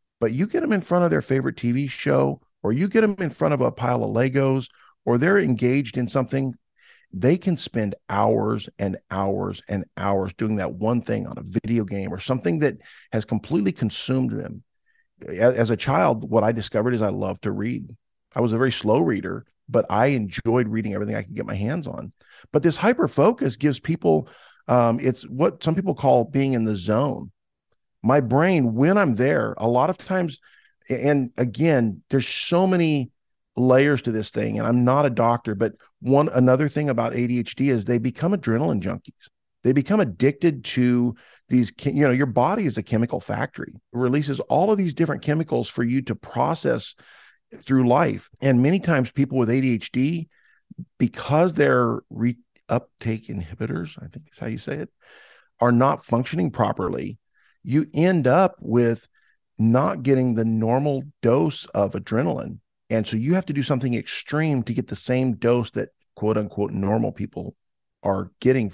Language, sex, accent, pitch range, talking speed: English, male, American, 115-145 Hz, 180 wpm